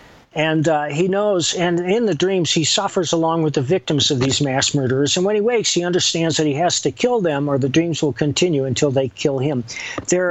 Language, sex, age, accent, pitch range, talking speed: English, male, 50-69, American, 135-175 Hz, 235 wpm